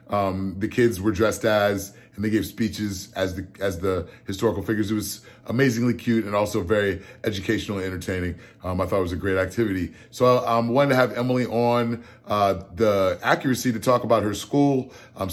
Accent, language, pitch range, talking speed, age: American, English, 105-125 Hz, 200 wpm, 30-49